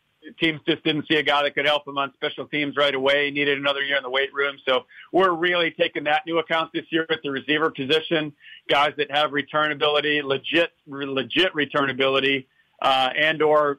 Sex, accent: male, American